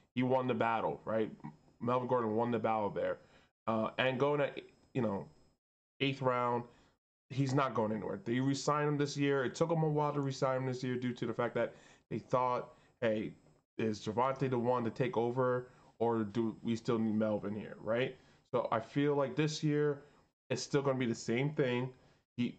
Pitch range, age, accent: 115-140 Hz, 20-39, American